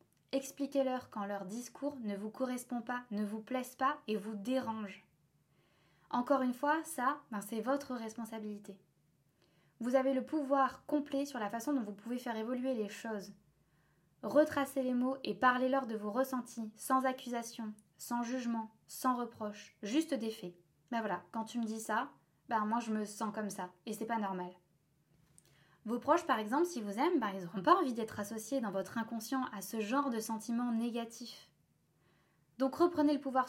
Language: French